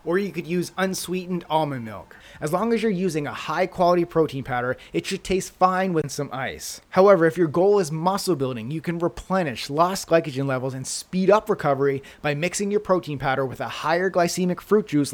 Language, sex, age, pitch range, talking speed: English, male, 30-49, 135-180 Hz, 205 wpm